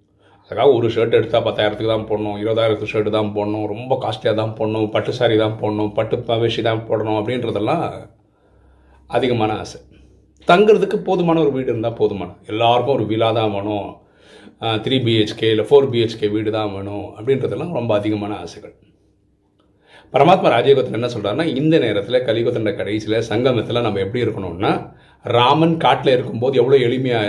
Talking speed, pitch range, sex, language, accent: 145 wpm, 105-125 Hz, male, Tamil, native